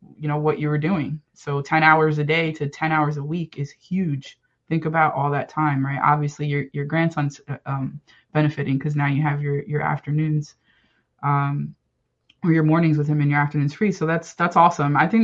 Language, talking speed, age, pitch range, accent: English, 215 wpm, 20-39, 145-160 Hz, American